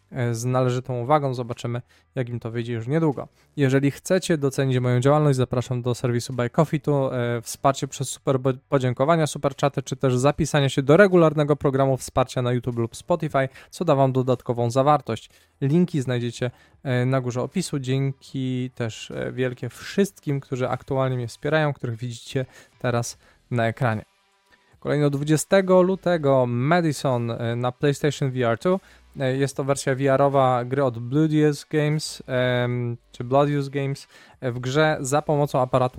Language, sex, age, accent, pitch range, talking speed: Polish, male, 20-39, native, 125-145 Hz, 140 wpm